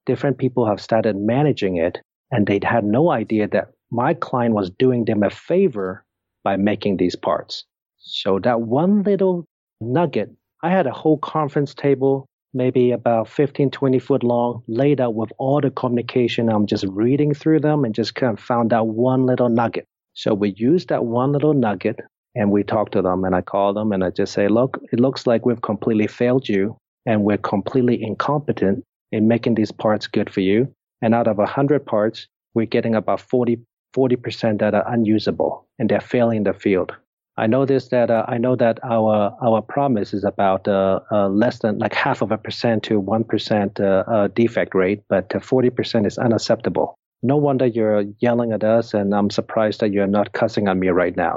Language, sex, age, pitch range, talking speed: English, male, 40-59, 105-130 Hz, 195 wpm